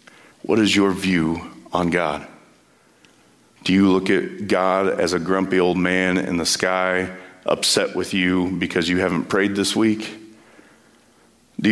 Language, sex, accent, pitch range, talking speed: English, male, American, 90-105 Hz, 150 wpm